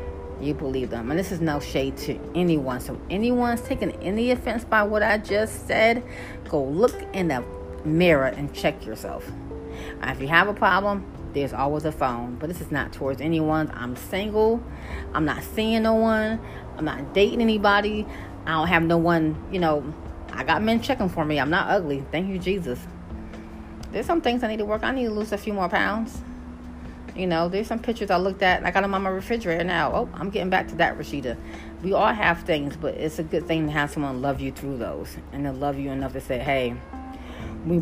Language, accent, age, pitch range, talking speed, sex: English, American, 40-59, 125-185 Hz, 215 wpm, female